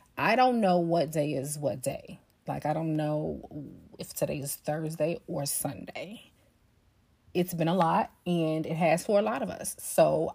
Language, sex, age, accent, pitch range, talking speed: English, female, 30-49, American, 150-180 Hz, 180 wpm